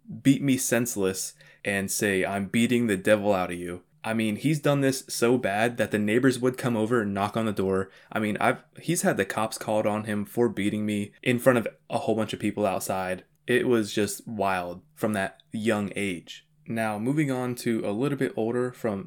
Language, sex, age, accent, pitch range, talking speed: English, male, 20-39, American, 100-125 Hz, 215 wpm